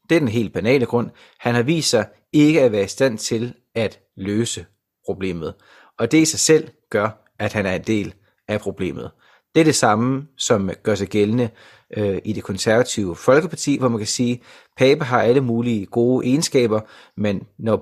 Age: 30-49